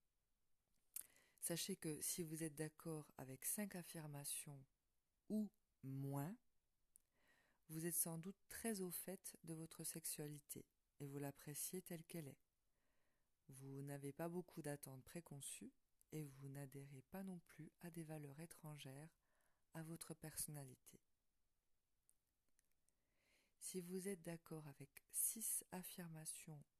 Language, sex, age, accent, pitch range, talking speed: French, female, 40-59, French, 145-175 Hz, 120 wpm